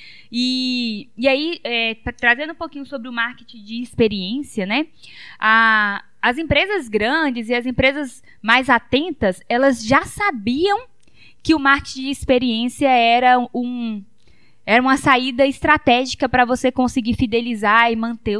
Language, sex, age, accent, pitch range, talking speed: Portuguese, female, 20-39, Brazilian, 230-285 Hz, 125 wpm